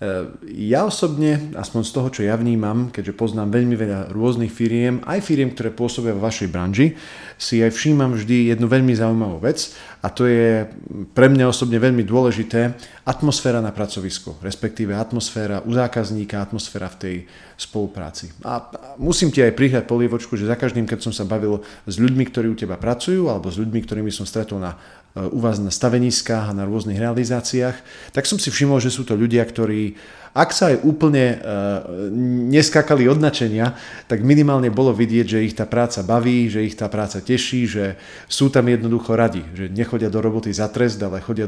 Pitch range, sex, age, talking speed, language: 105-125 Hz, male, 40-59, 180 wpm, Slovak